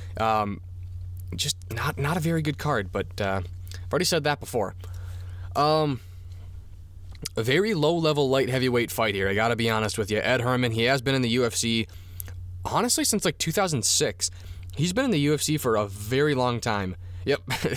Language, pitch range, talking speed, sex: English, 90-140 Hz, 175 wpm, male